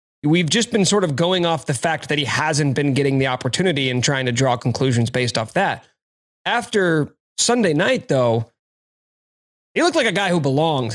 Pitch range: 130-165 Hz